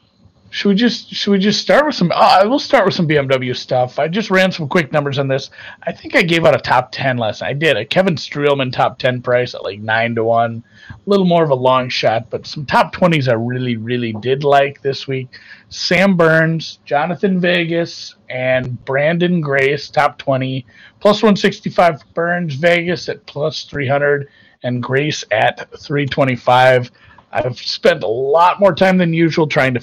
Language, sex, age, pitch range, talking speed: English, male, 30-49, 125-170 Hz, 190 wpm